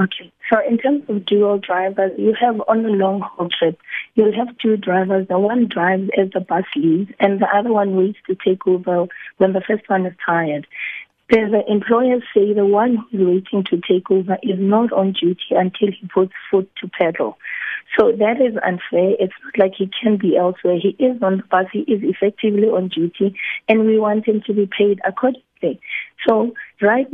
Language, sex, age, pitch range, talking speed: English, female, 20-39, 190-220 Hz, 195 wpm